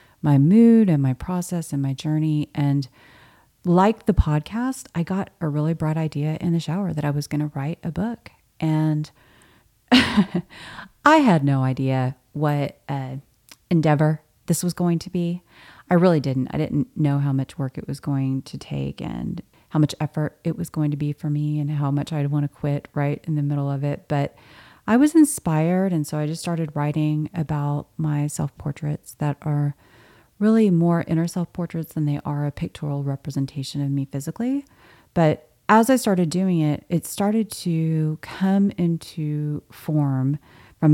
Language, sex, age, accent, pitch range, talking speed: English, female, 30-49, American, 145-170 Hz, 180 wpm